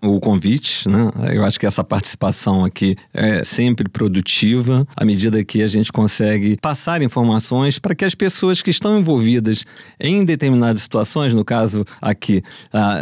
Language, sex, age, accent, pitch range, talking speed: Portuguese, male, 40-59, Brazilian, 105-135 Hz, 155 wpm